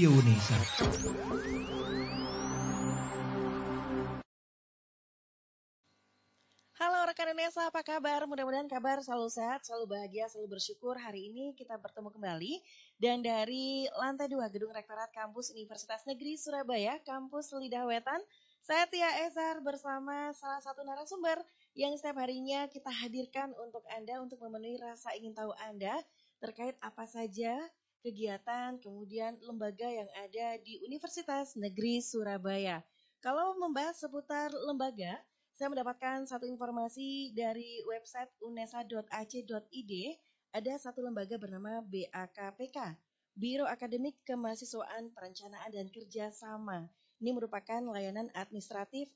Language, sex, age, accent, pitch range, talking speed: Indonesian, female, 20-39, native, 210-275 Hz, 105 wpm